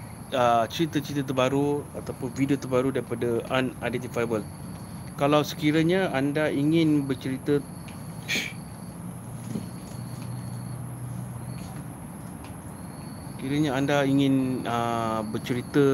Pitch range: 115-135 Hz